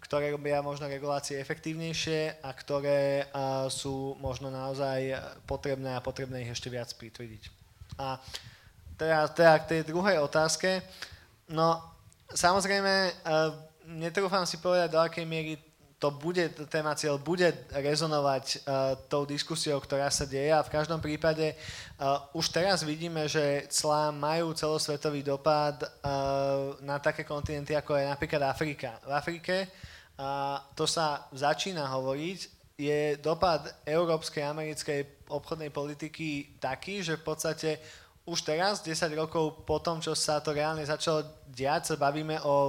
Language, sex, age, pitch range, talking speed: Slovak, male, 20-39, 140-160 Hz, 140 wpm